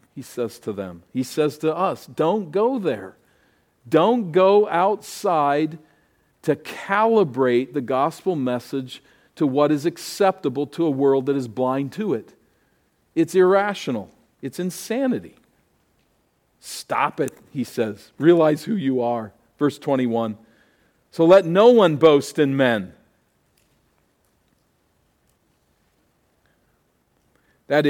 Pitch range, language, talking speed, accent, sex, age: 130-180 Hz, English, 115 wpm, American, male, 50-69